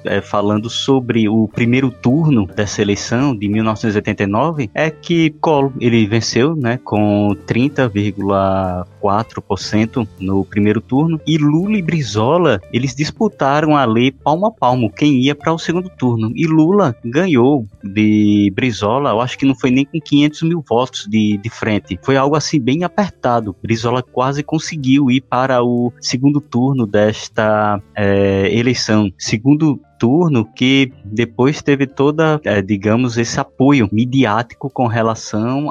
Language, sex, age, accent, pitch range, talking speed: Portuguese, male, 20-39, Brazilian, 105-135 Hz, 145 wpm